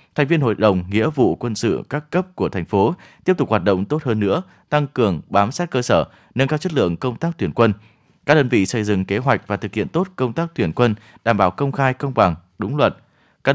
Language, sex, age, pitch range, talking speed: Vietnamese, male, 20-39, 105-140 Hz, 255 wpm